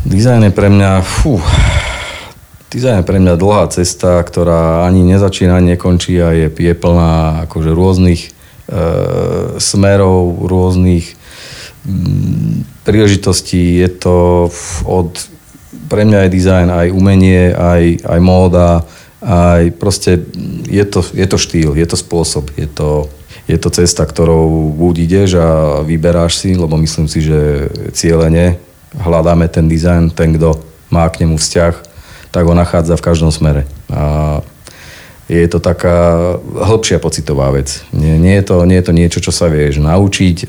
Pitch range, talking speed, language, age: 80-90 Hz, 140 wpm, Slovak, 40-59